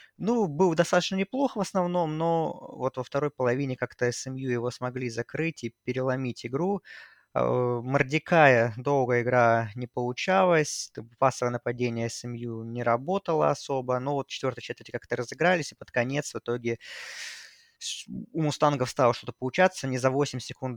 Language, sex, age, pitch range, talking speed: Russian, male, 20-39, 120-150 Hz, 145 wpm